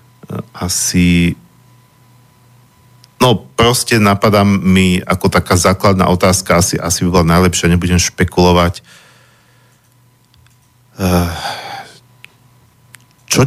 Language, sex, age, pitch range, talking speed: Slovak, male, 50-69, 90-105 Hz, 75 wpm